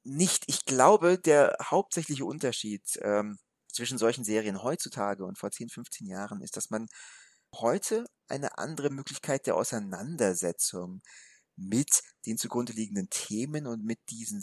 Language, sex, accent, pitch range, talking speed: German, male, German, 110-135 Hz, 135 wpm